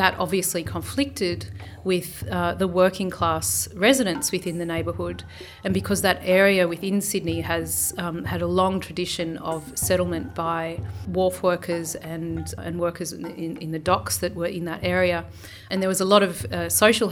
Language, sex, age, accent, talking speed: English, female, 30-49, Australian, 170 wpm